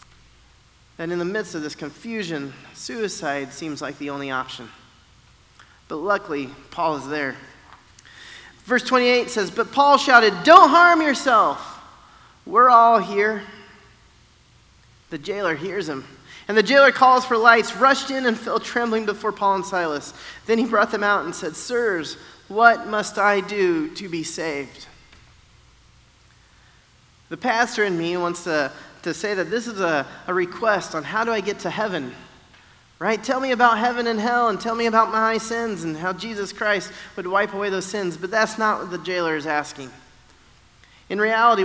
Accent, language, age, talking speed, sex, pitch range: American, English, 30-49, 170 wpm, male, 155-225 Hz